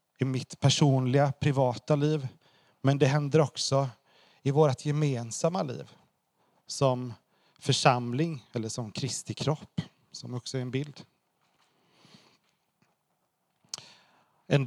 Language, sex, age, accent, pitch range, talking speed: Swedish, male, 30-49, native, 125-150 Hz, 100 wpm